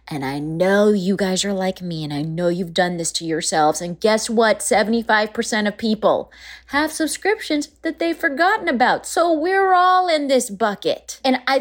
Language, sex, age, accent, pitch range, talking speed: English, female, 30-49, American, 185-245 Hz, 185 wpm